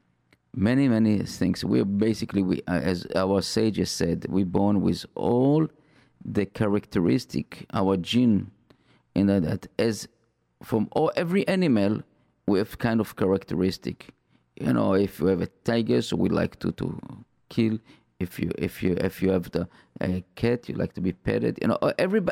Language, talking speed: English, 175 wpm